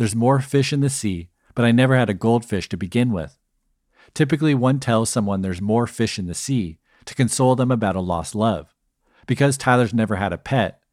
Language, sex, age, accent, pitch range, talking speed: English, male, 50-69, American, 100-125 Hz, 210 wpm